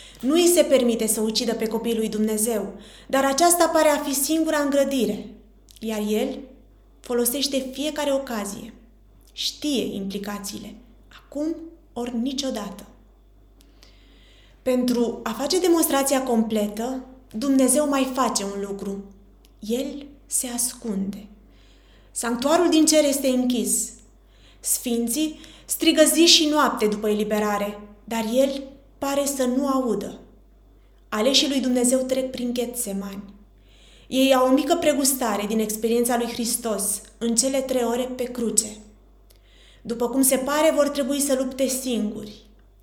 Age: 20-39